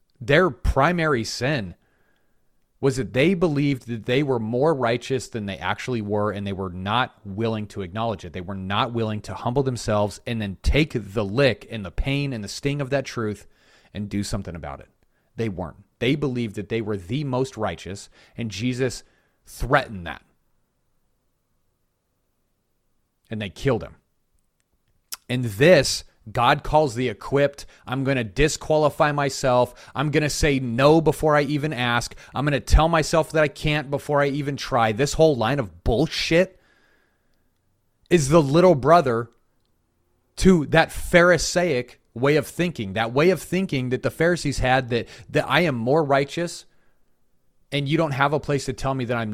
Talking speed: 170 wpm